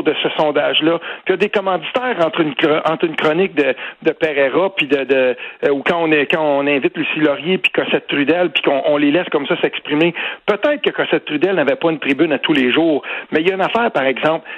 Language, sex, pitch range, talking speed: French, male, 160-240 Hz, 250 wpm